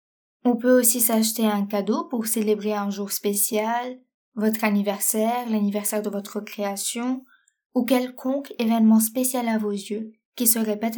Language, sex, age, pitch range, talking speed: French, female, 20-39, 215-255 Hz, 150 wpm